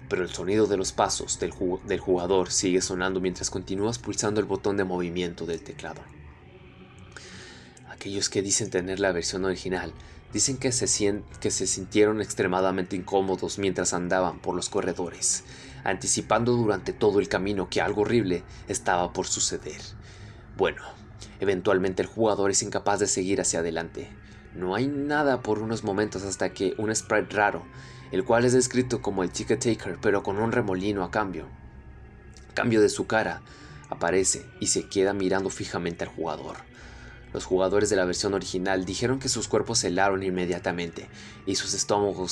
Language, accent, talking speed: Spanish, Mexican, 160 wpm